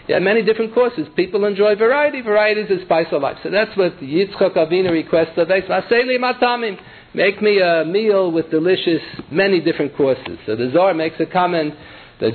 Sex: male